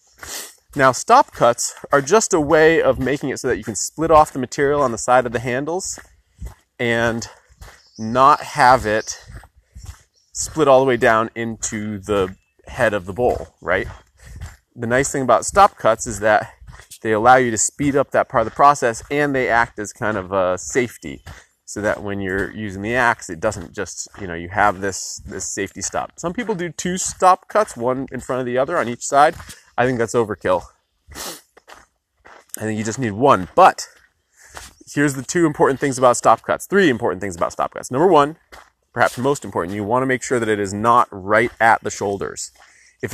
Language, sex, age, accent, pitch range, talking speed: English, male, 30-49, American, 105-135 Hz, 200 wpm